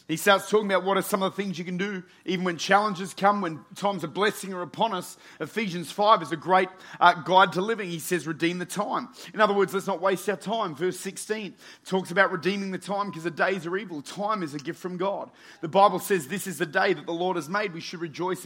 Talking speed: 255 wpm